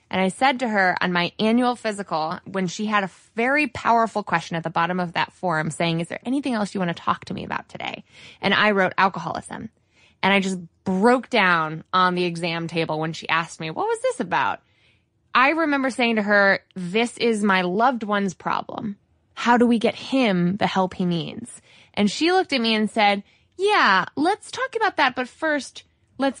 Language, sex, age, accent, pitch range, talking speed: English, female, 20-39, American, 175-240 Hz, 205 wpm